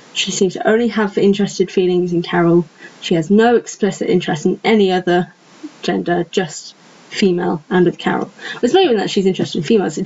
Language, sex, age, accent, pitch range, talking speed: English, female, 10-29, British, 180-225 Hz, 190 wpm